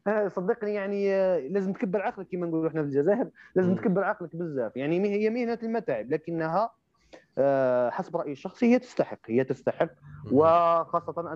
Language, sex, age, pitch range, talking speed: Arabic, male, 30-49, 155-190 Hz, 145 wpm